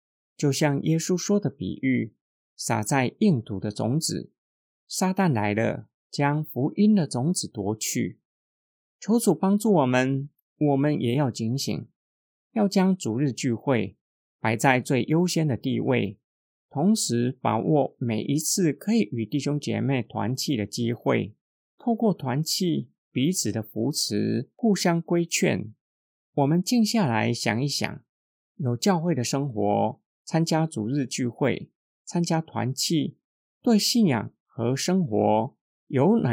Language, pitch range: Chinese, 115-165 Hz